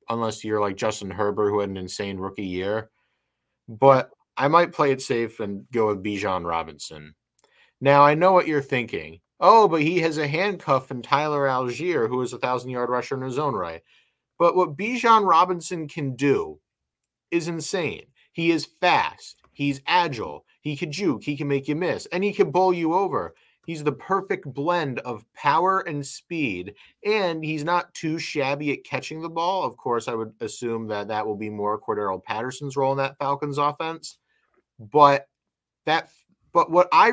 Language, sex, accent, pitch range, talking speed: English, male, American, 120-170 Hz, 180 wpm